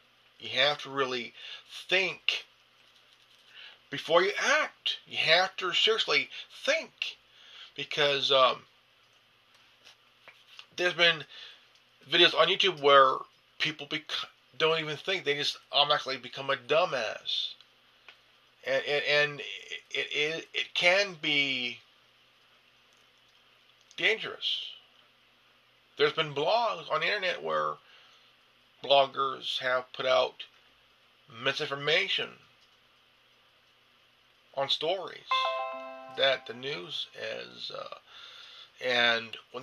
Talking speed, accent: 90 wpm, American